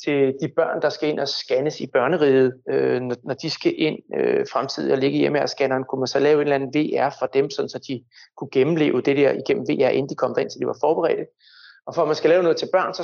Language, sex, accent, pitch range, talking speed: Danish, male, native, 135-230 Hz, 265 wpm